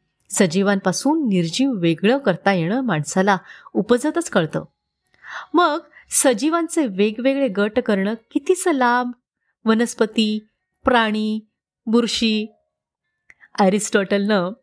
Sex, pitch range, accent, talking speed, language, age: female, 180-240 Hz, native, 75 wpm, Marathi, 30-49